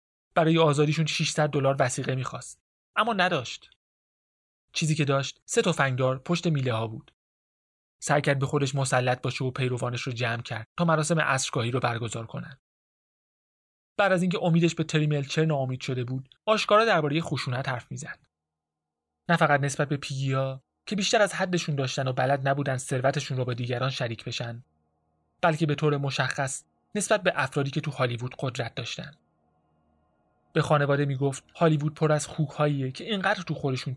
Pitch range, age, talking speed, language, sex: 125-155 Hz, 30-49, 160 wpm, Persian, male